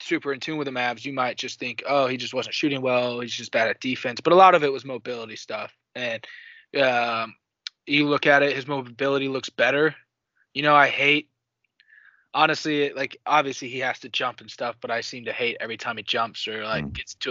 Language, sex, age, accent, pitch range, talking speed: English, male, 20-39, American, 120-145 Hz, 225 wpm